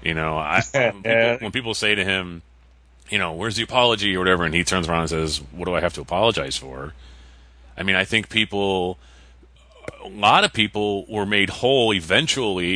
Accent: American